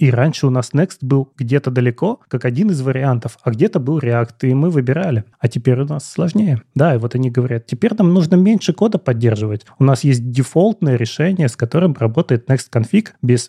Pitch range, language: 120-150 Hz, Russian